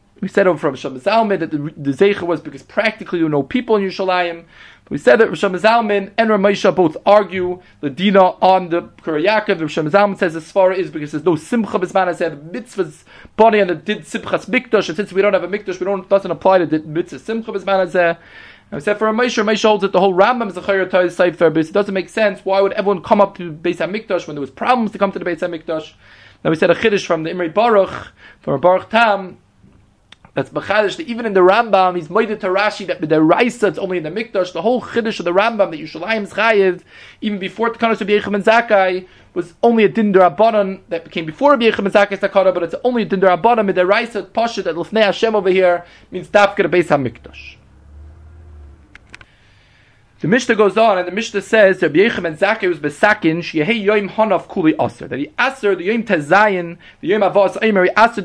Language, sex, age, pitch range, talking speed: English, male, 20-39, 170-210 Hz, 200 wpm